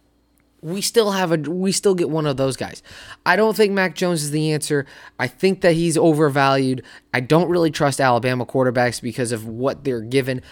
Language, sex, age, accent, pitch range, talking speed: English, male, 20-39, American, 125-155 Hz, 200 wpm